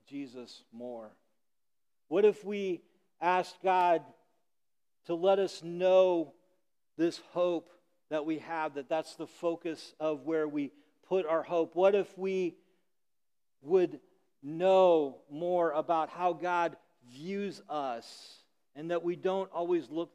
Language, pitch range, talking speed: English, 140-175 Hz, 130 wpm